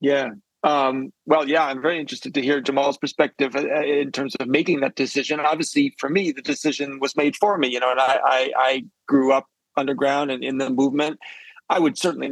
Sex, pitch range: male, 135-150 Hz